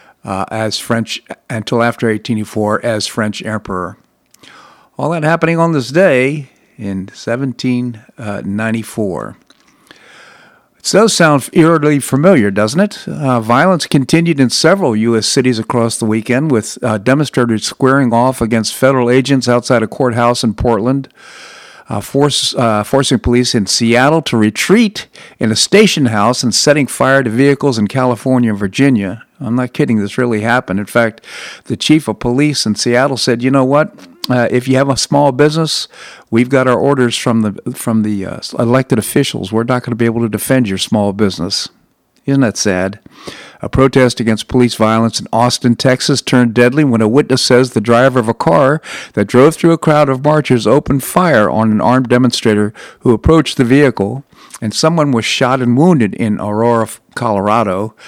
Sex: male